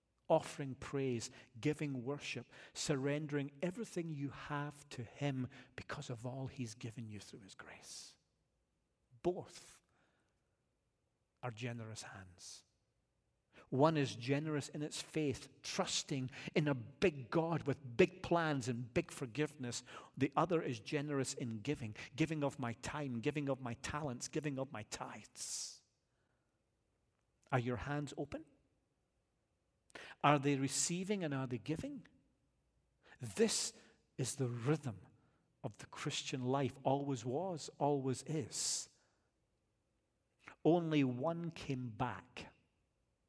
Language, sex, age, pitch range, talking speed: English, male, 50-69, 120-150 Hz, 120 wpm